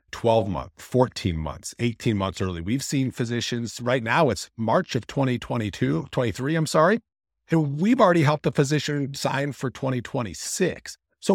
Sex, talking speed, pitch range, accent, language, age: male, 155 wpm, 105-165 Hz, American, English, 50-69